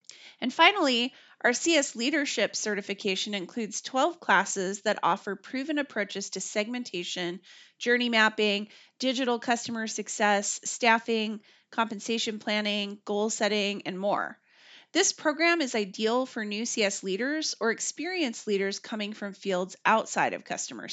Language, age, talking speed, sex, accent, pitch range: English, 30-49, 125 wpm, female, American, 200-260 Hz